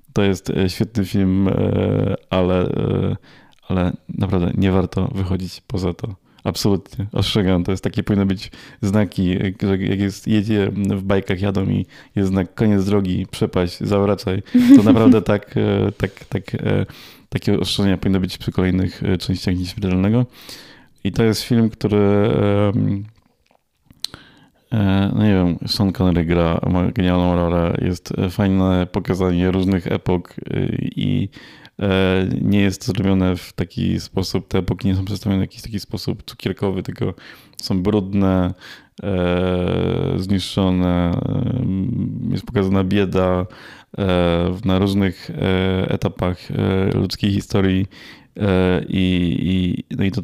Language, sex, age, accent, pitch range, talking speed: Polish, male, 20-39, native, 90-100 Hz, 120 wpm